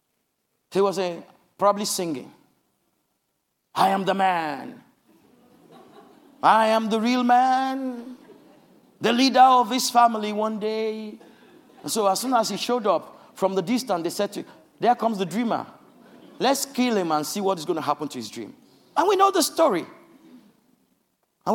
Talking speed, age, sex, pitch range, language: 160 wpm, 50-69, male, 195-260 Hz, English